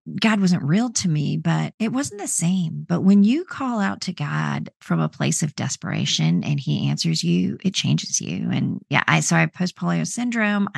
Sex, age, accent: female, 30-49, American